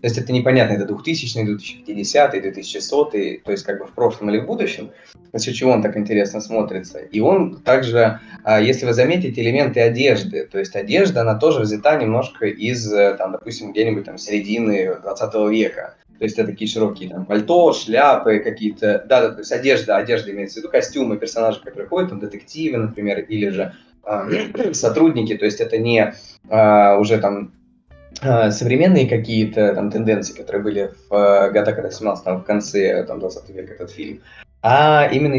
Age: 20-39